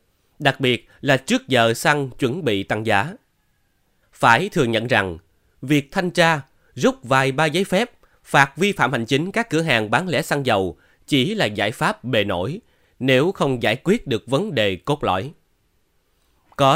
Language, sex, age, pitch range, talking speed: Vietnamese, male, 20-39, 110-155 Hz, 180 wpm